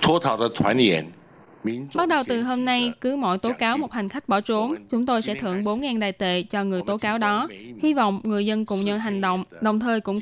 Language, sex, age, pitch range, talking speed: Vietnamese, female, 10-29, 195-235 Hz, 215 wpm